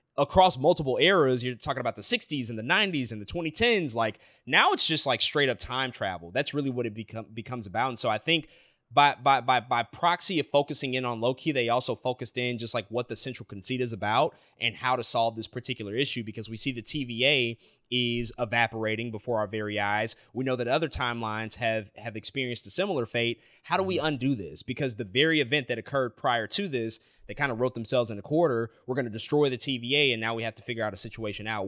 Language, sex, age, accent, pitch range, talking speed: English, male, 20-39, American, 110-140 Hz, 235 wpm